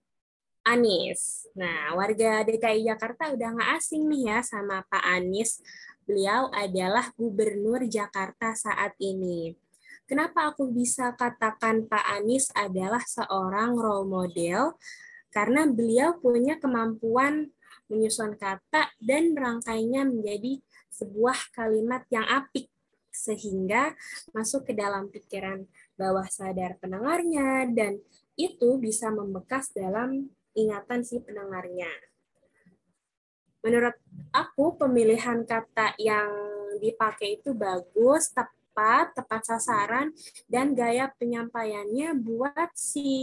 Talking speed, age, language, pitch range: 105 wpm, 10-29, English, 210-260 Hz